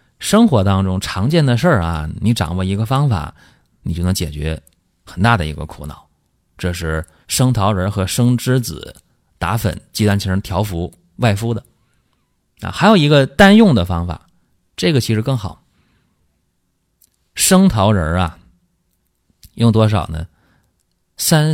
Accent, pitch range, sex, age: native, 90-130 Hz, male, 30-49